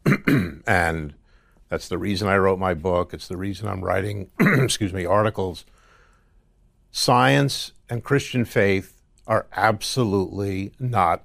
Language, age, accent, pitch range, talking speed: English, 60-79, American, 85-105 Hz, 125 wpm